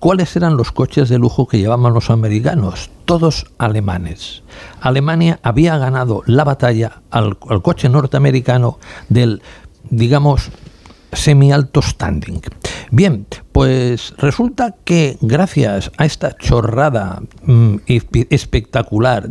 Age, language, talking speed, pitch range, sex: 60-79, Spanish, 105 wpm, 110-145 Hz, male